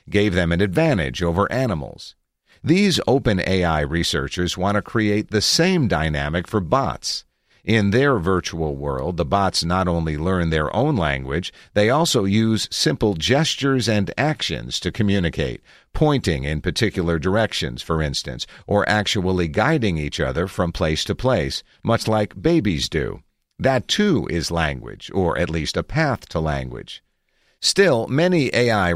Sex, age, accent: male, 50-69, American